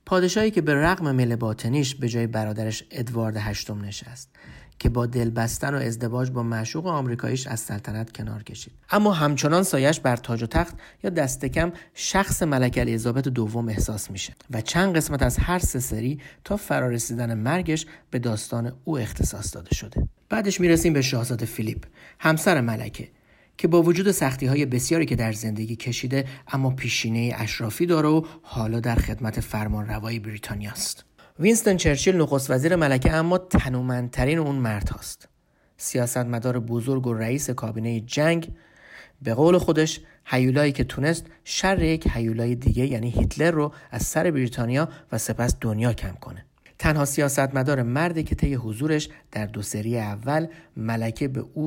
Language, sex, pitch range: Persian, male, 115-155 Hz